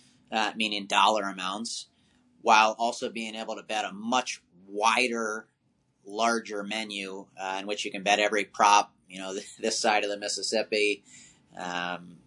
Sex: male